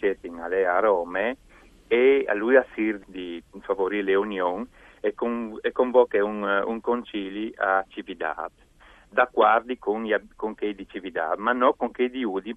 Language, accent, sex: Italian, native, male